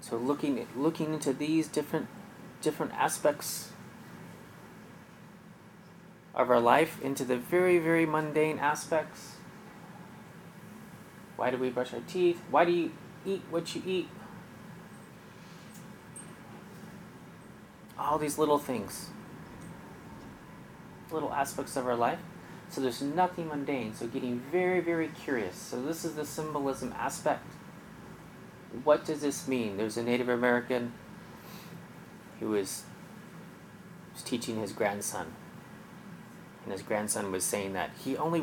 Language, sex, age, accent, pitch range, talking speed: English, male, 30-49, American, 130-180 Hz, 120 wpm